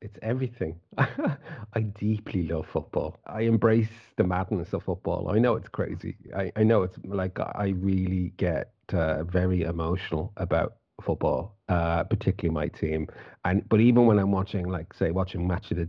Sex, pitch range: male, 90-110 Hz